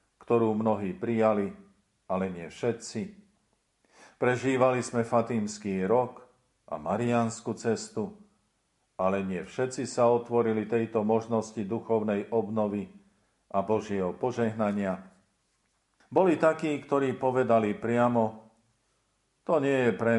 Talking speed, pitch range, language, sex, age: 100 wpm, 105-125 Hz, Slovak, male, 50-69